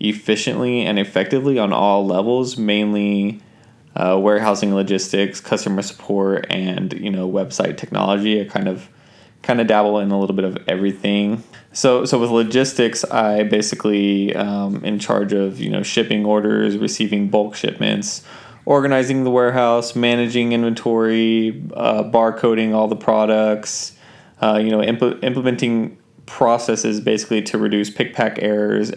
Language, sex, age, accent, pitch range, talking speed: English, male, 20-39, American, 100-115 Hz, 140 wpm